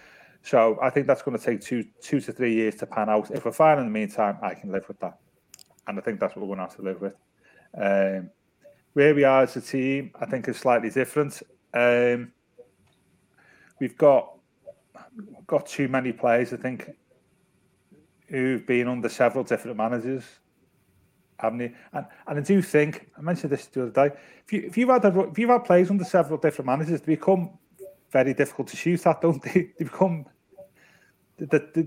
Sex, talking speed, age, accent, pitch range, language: male, 200 wpm, 30-49, British, 125-160 Hz, English